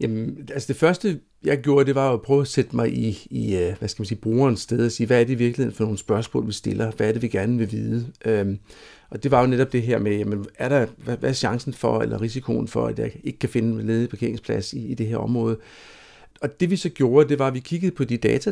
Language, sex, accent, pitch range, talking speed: Danish, male, native, 110-140 Hz, 265 wpm